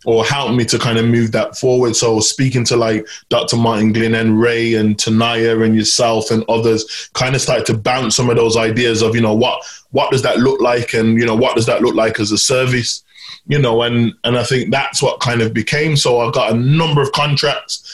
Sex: male